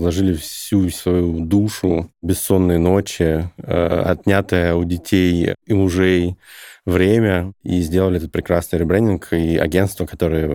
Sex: male